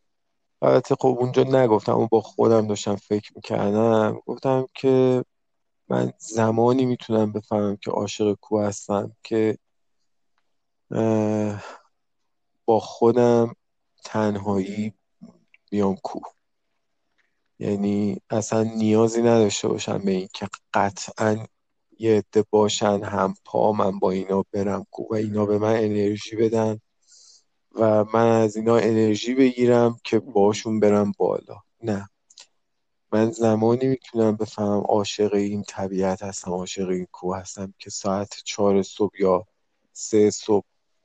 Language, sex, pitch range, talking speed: Persian, male, 100-110 Hz, 115 wpm